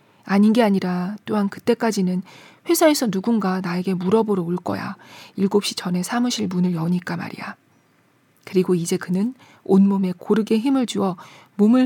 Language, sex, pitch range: Korean, female, 185-235 Hz